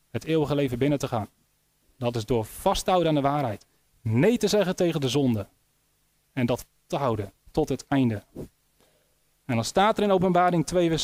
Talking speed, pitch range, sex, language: 185 wpm, 130-195 Hz, male, Dutch